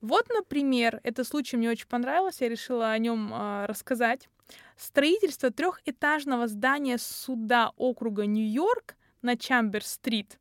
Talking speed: 120 wpm